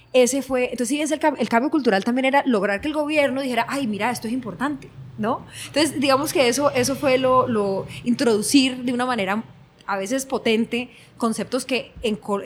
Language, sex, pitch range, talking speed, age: Spanish, female, 210-275 Hz, 180 wpm, 20-39